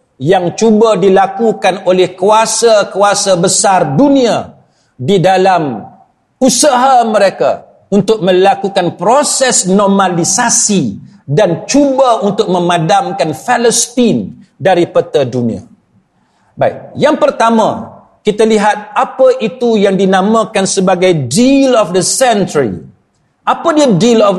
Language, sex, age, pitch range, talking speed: Malay, male, 50-69, 185-235 Hz, 100 wpm